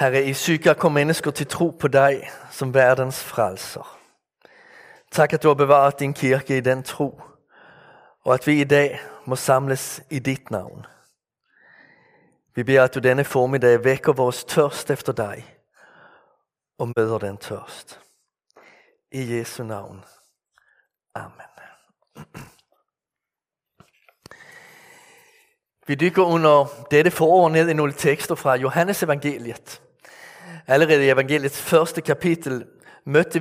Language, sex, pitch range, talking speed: Danish, male, 135-175 Hz, 125 wpm